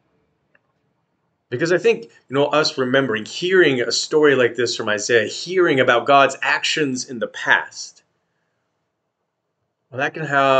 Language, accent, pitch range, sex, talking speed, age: English, American, 120-150 Hz, male, 135 wpm, 30-49